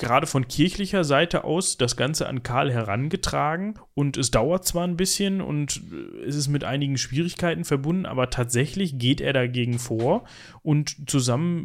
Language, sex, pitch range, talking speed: German, male, 130-165 Hz, 160 wpm